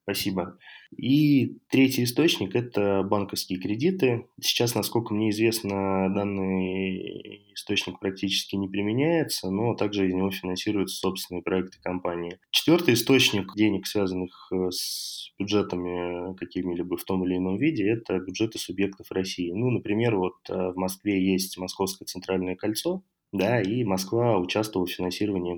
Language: Russian